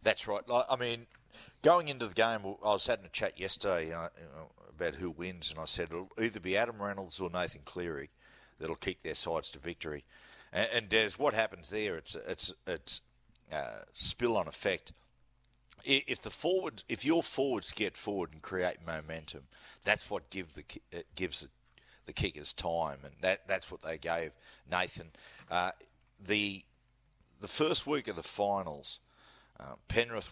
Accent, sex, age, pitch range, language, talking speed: Australian, male, 50-69, 85-110 Hz, English, 160 wpm